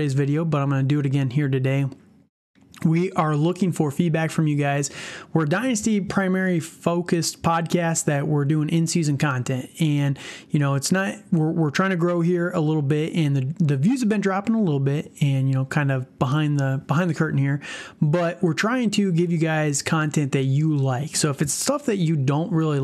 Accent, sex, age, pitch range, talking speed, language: American, male, 30-49, 140-170 Hz, 220 wpm, English